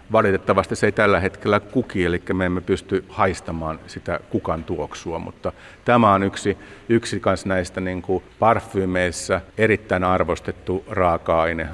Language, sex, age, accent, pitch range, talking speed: Finnish, male, 50-69, native, 85-100 Hz, 130 wpm